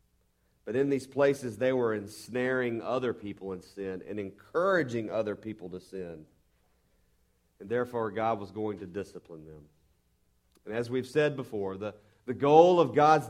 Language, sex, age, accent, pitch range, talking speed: English, male, 40-59, American, 75-125 Hz, 160 wpm